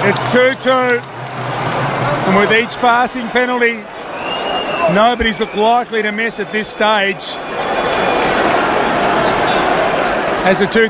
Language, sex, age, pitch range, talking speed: English, male, 30-49, 225-325 Hz, 100 wpm